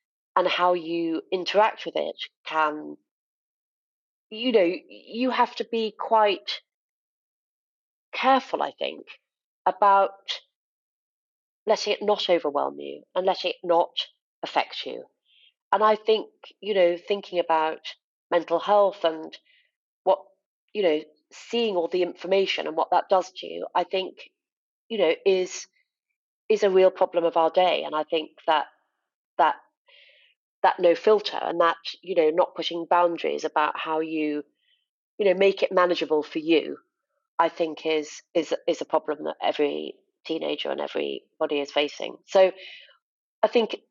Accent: British